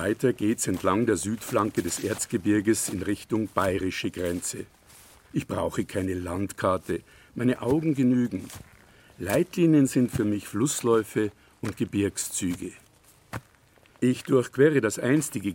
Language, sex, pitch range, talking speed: German, male, 100-135 Hz, 110 wpm